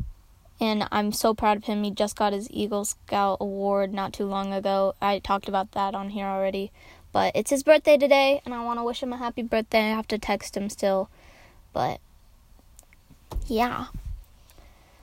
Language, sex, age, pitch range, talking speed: English, female, 10-29, 205-245 Hz, 185 wpm